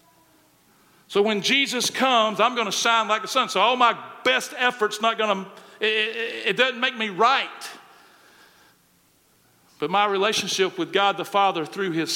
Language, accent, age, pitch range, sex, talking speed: English, American, 50-69, 175-225 Hz, male, 175 wpm